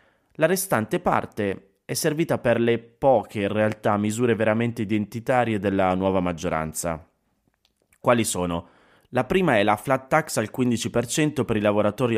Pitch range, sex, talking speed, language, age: 95-110 Hz, male, 145 wpm, Italian, 20-39